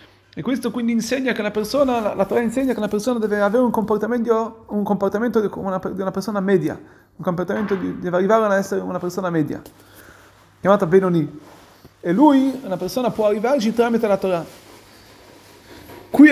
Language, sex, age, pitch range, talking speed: Italian, male, 30-49, 155-220 Hz, 175 wpm